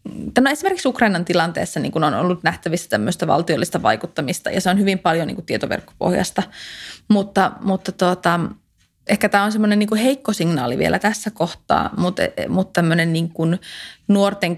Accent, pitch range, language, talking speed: native, 175-210 Hz, Finnish, 145 wpm